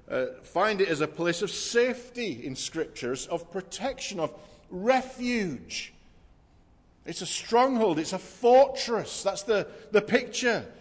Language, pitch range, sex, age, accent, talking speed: English, 165-225 Hz, male, 50-69, British, 135 wpm